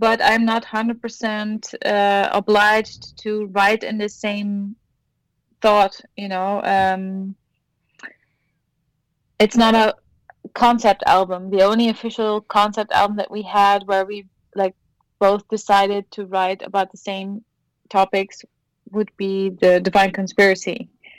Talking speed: 125 wpm